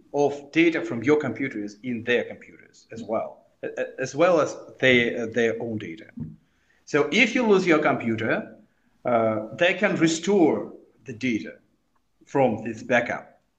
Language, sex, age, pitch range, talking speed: English, male, 40-59, 125-195 Hz, 140 wpm